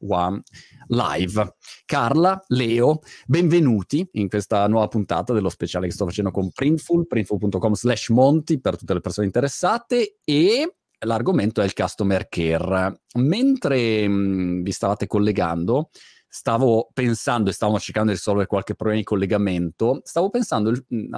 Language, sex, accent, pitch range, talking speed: Italian, male, native, 100-150 Hz, 135 wpm